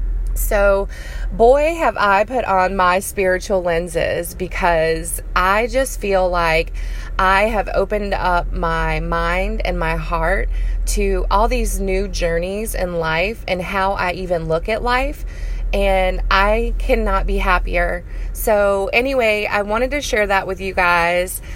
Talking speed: 145 wpm